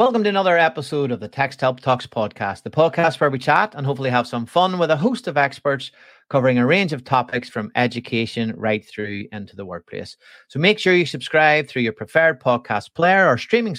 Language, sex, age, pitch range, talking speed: English, male, 30-49, 110-150 Hz, 215 wpm